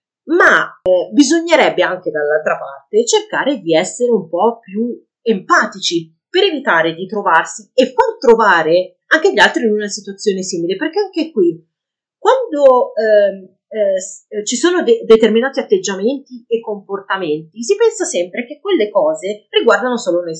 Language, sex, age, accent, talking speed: Italian, female, 30-49, native, 145 wpm